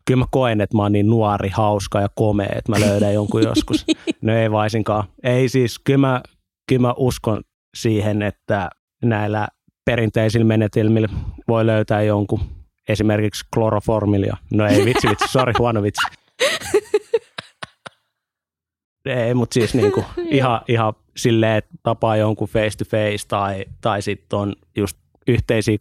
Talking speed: 145 wpm